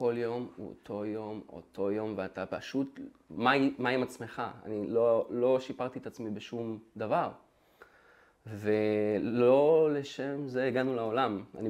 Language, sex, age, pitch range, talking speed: Hebrew, male, 20-39, 105-135 Hz, 140 wpm